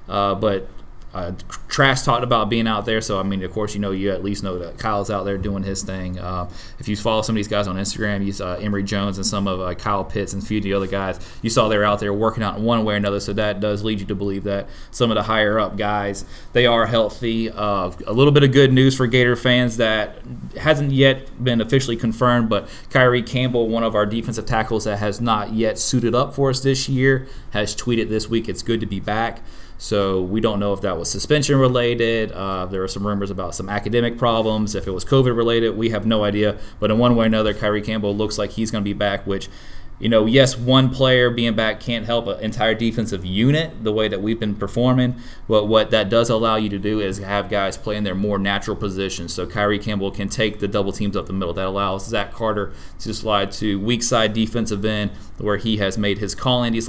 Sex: male